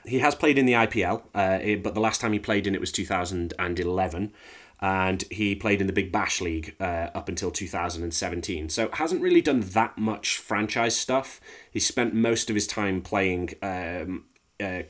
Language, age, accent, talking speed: English, 30-49, British, 185 wpm